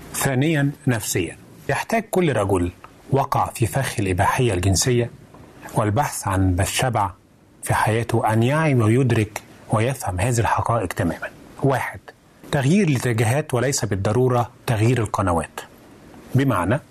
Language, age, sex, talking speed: Arabic, 30-49, male, 105 wpm